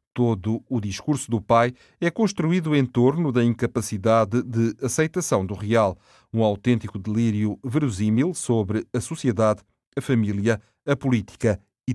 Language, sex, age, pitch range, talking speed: Portuguese, male, 40-59, 110-125 Hz, 135 wpm